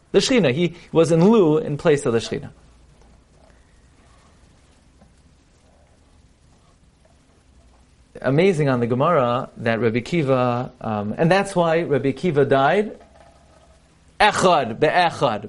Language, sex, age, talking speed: English, male, 40-59, 105 wpm